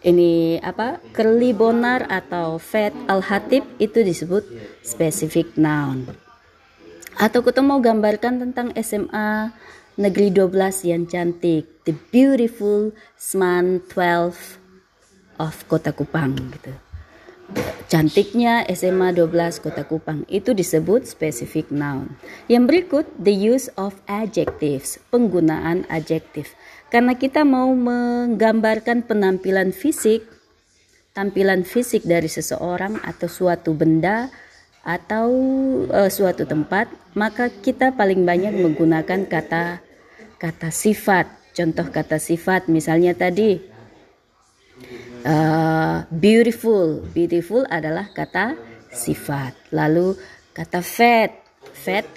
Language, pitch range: English, 160-220 Hz